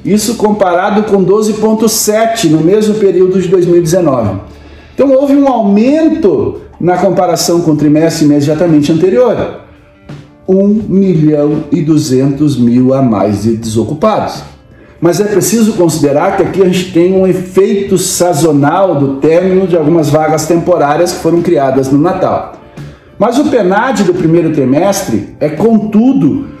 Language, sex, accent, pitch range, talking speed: Portuguese, male, Brazilian, 155-220 Hz, 135 wpm